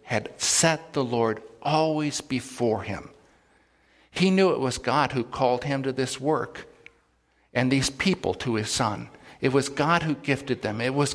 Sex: male